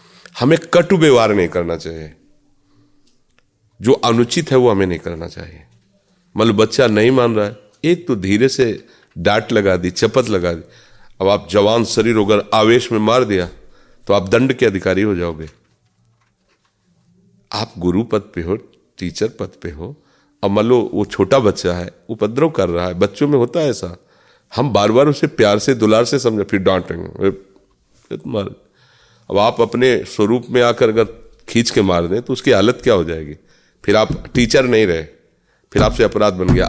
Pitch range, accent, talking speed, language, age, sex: 90-120 Hz, native, 180 wpm, Hindi, 40-59, male